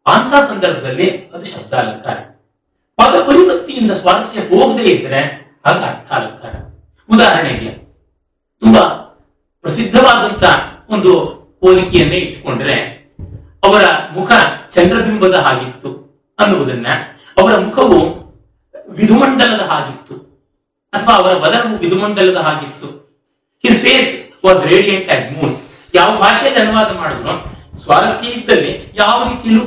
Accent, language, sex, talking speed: native, Kannada, male, 85 wpm